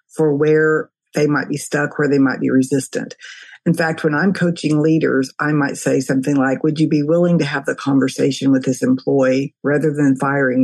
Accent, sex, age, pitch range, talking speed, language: American, female, 50-69, 140-165 Hz, 205 wpm, English